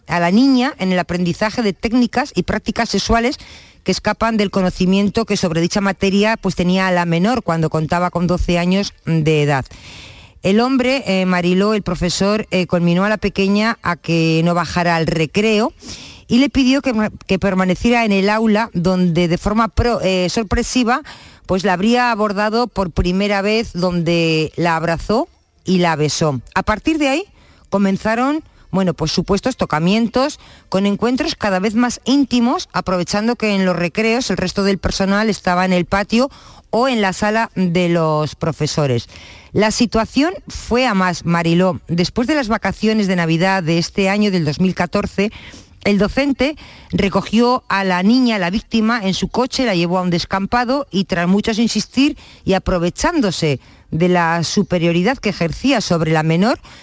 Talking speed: 165 wpm